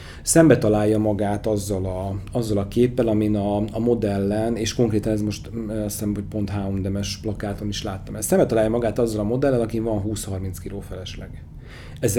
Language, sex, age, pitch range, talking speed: Hungarian, male, 40-59, 100-125 Hz, 175 wpm